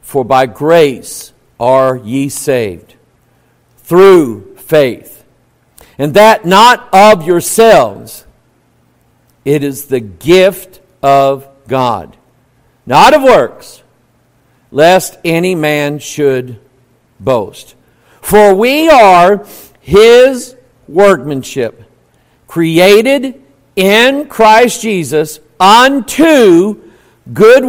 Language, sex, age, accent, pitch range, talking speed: English, male, 50-69, American, 145-215 Hz, 80 wpm